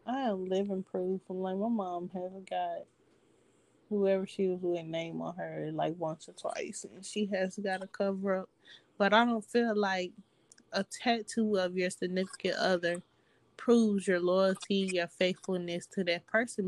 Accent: American